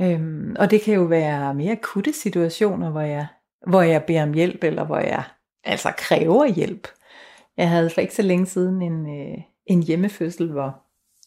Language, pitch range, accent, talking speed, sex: Danish, 160-205 Hz, native, 165 wpm, female